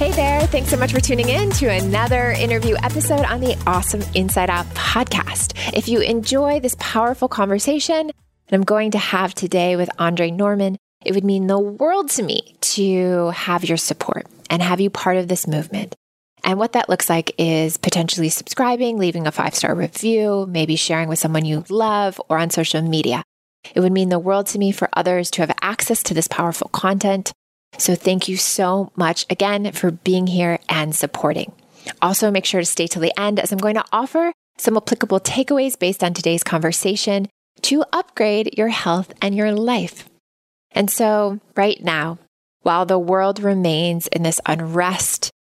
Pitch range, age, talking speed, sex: 165-205 Hz, 20-39, 180 wpm, female